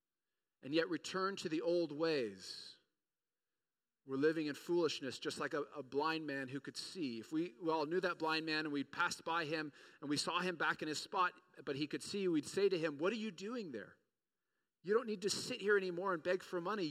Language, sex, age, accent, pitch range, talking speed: English, male, 40-59, American, 145-185 Hz, 225 wpm